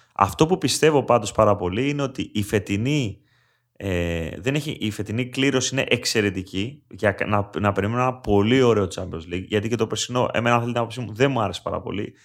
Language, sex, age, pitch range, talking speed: Greek, male, 30-49, 105-135 Hz, 190 wpm